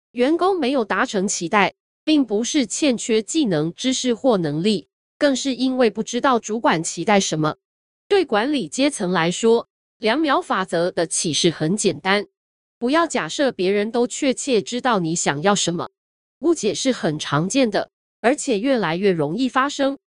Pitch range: 180-265 Hz